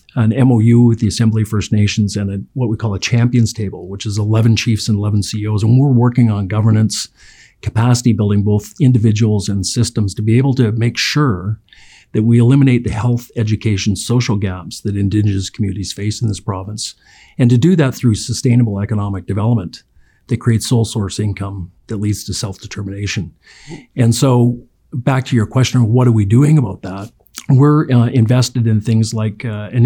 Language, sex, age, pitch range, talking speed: English, male, 50-69, 105-125 Hz, 185 wpm